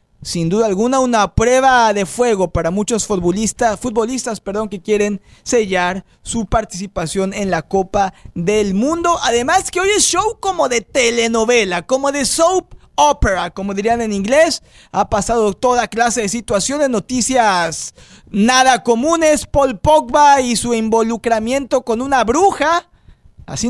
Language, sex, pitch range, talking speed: Spanish, male, 205-270 Hz, 140 wpm